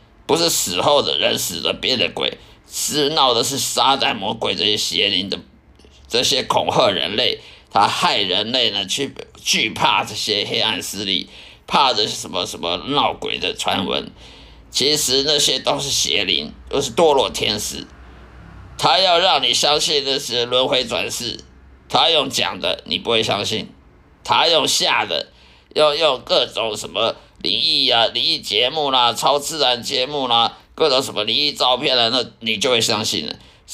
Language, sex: Chinese, male